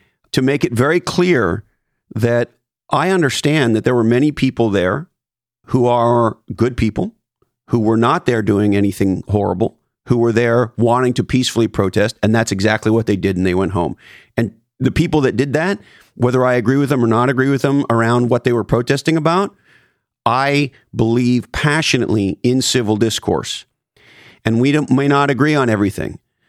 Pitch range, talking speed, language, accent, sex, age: 110-135 Hz, 175 wpm, English, American, male, 40-59